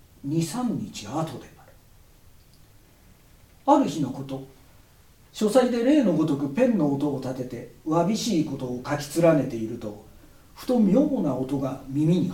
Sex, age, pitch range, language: male, 50-69, 130-180 Hz, Japanese